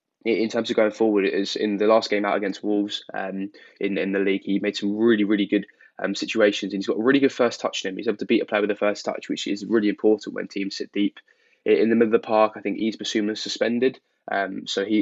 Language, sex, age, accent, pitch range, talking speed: English, male, 10-29, British, 100-110 Hz, 270 wpm